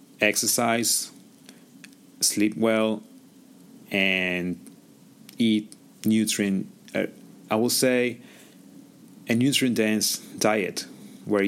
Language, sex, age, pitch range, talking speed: English, male, 30-49, 100-120 Hz, 80 wpm